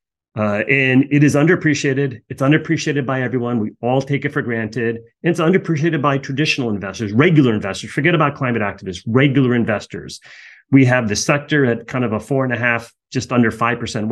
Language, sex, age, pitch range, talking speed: English, male, 30-49, 110-135 Hz, 185 wpm